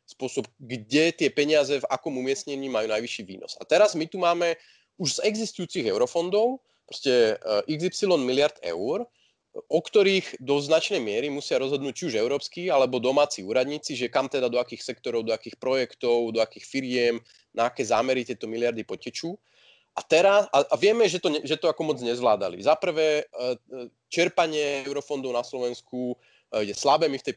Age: 30-49